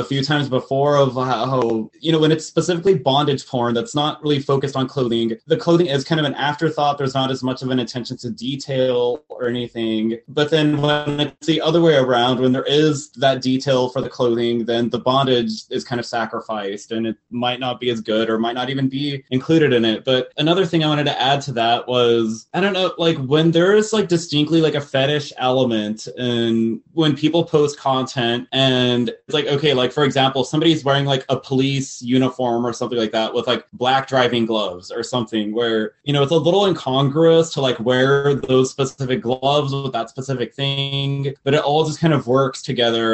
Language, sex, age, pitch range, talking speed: English, male, 20-39, 120-145 Hz, 210 wpm